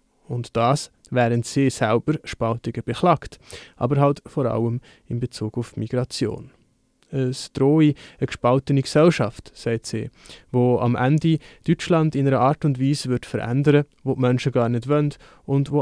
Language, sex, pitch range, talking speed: German, male, 120-140 Hz, 155 wpm